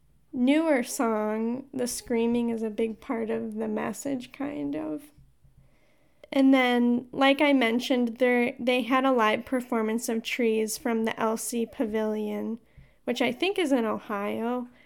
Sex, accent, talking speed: female, American, 140 wpm